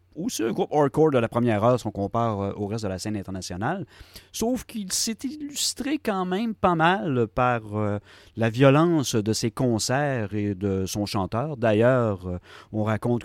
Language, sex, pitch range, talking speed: French, male, 100-145 Hz, 185 wpm